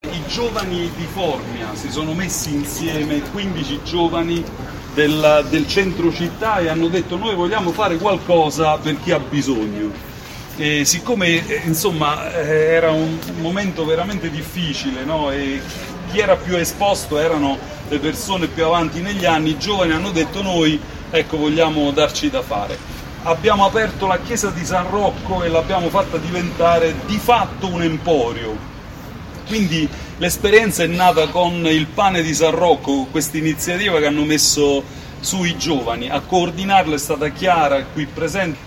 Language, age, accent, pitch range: Italian, 40-59, native, 145-185 Hz